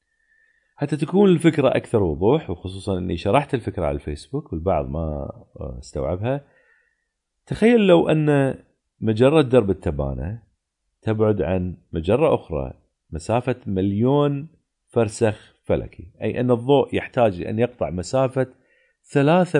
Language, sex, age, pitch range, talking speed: Arabic, male, 40-59, 90-140 Hz, 110 wpm